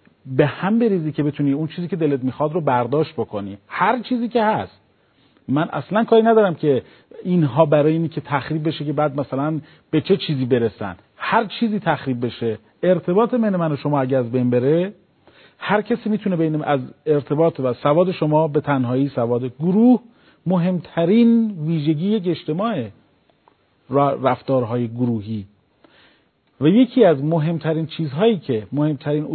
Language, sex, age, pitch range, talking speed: Persian, male, 40-59, 135-180 Hz, 150 wpm